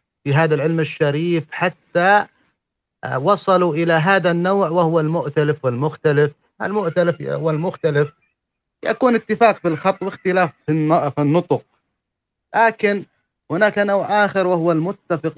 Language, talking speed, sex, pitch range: English, 105 wpm, male, 145-190 Hz